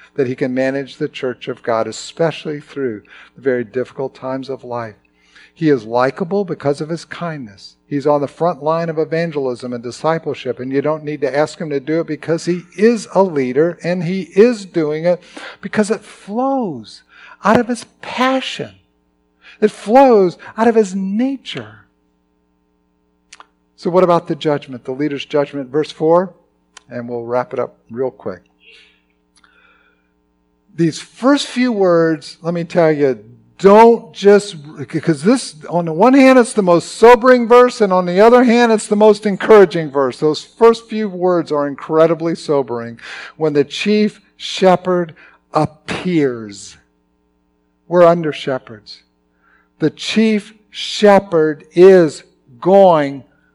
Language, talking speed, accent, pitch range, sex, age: English, 150 wpm, American, 125-195 Hz, male, 50-69